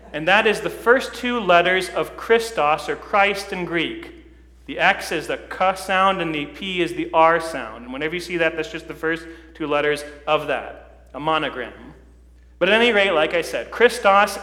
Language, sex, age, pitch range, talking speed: English, male, 40-59, 160-200 Hz, 205 wpm